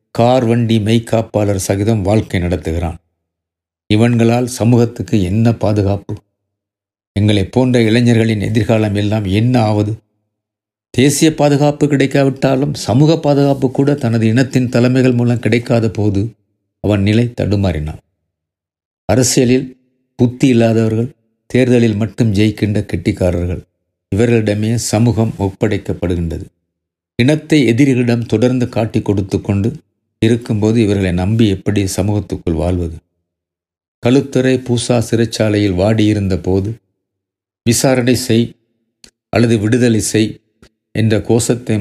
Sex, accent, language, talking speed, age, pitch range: male, native, Tamil, 95 wpm, 50-69, 100-120 Hz